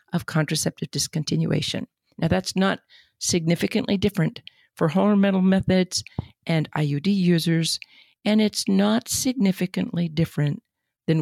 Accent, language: American, English